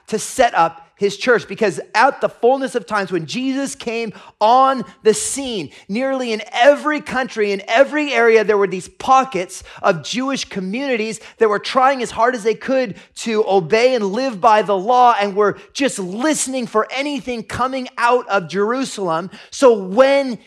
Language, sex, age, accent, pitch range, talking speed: English, male, 30-49, American, 195-260 Hz, 170 wpm